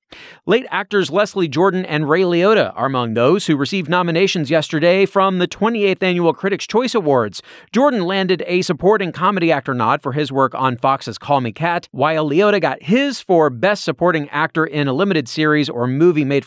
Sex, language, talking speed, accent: male, English, 185 wpm, American